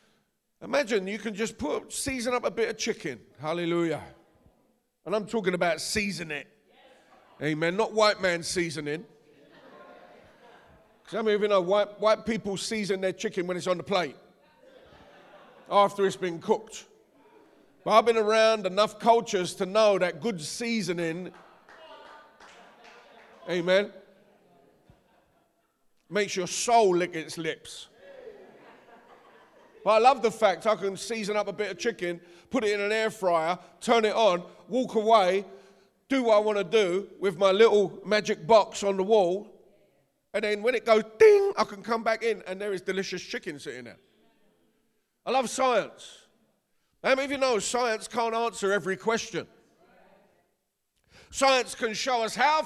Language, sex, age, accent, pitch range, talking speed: English, male, 40-59, British, 190-230 Hz, 155 wpm